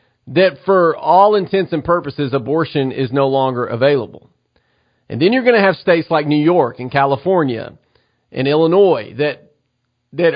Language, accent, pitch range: English, American, 140-175 Hz